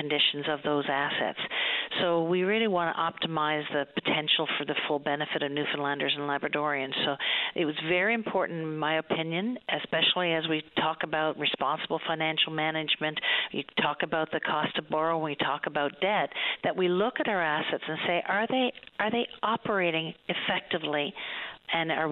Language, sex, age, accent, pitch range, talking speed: English, female, 50-69, American, 150-180 Hz, 170 wpm